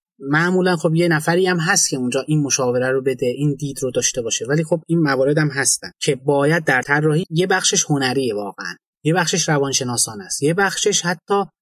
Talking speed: 195 wpm